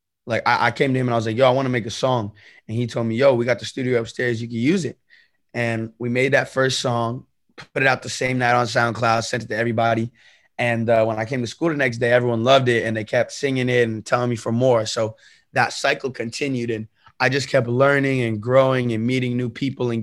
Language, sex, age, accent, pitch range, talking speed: Finnish, male, 20-39, American, 115-130 Hz, 260 wpm